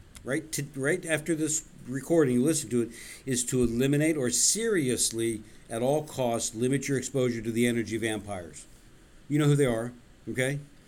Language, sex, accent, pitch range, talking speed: English, male, American, 115-140 Hz, 170 wpm